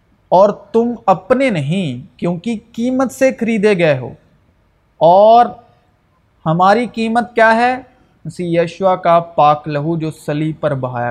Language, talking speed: Urdu, 135 wpm